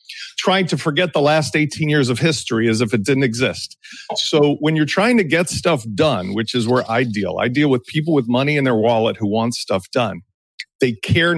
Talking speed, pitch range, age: 220 wpm, 120-175 Hz, 50-69